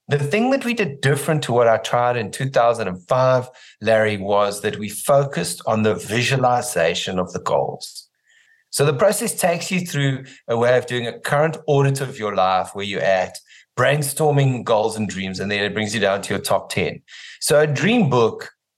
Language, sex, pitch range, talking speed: English, male, 110-150 Hz, 190 wpm